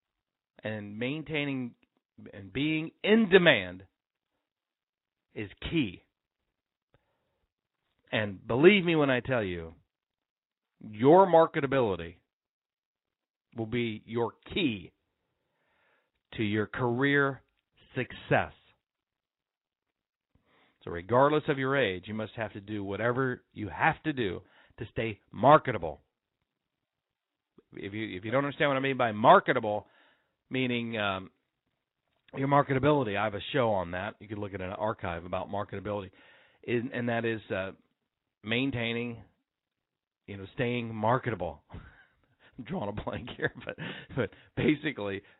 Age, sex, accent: 50-69, male, American